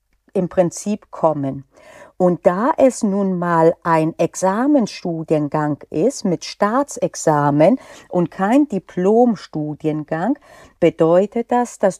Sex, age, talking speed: female, 50-69, 95 wpm